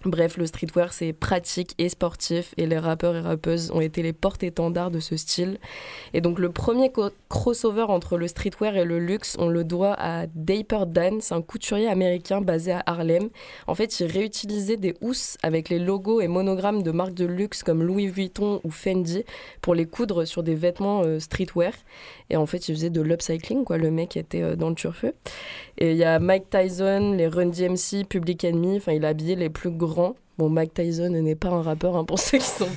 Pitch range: 165-195 Hz